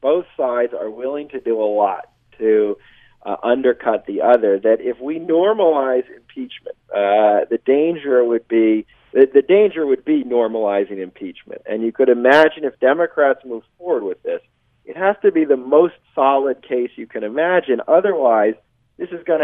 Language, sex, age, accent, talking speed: English, male, 40-59, American, 165 wpm